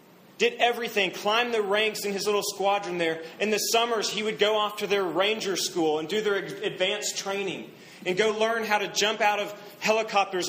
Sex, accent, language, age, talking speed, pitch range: male, American, English, 30-49, 200 wpm, 195-225 Hz